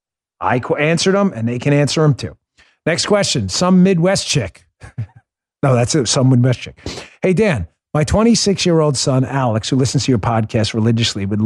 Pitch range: 115-170 Hz